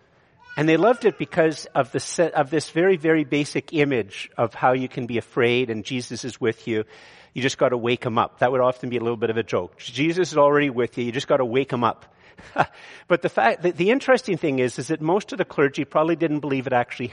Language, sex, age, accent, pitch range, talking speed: English, male, 50-69, American, 125-165 Hz, 255 wpm